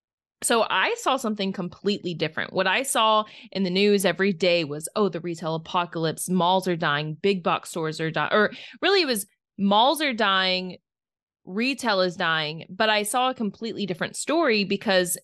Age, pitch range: 20-39, 170-215 Hz